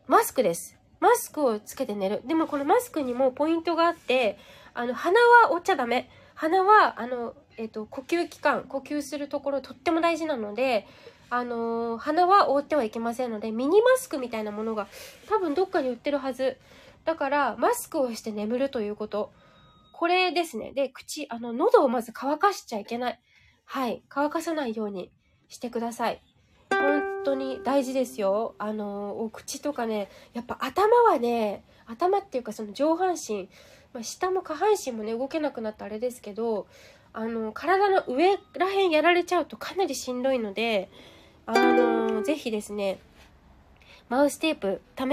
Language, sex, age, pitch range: Japanese, female, 20-39, 230-345 Hz